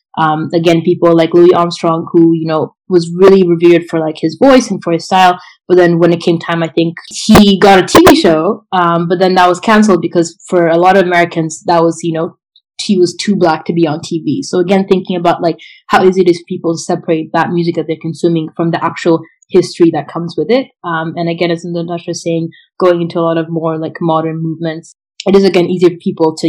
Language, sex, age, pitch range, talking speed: English, female, 20-39, 165-180 Hz, 240 wpm